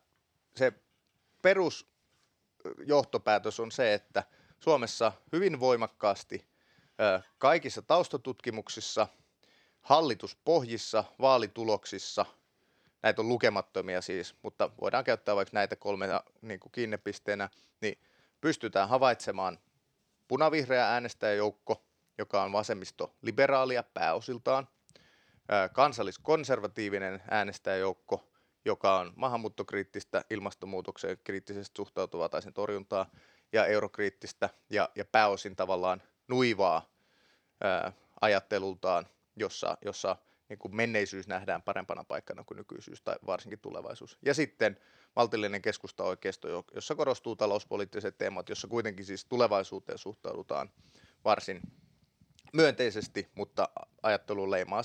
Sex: male